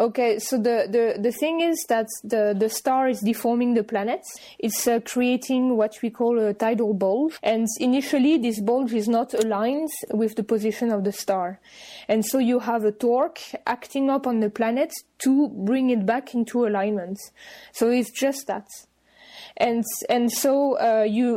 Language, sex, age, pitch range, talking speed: English, female, 20-39, 210-245 Hz, 175 wpm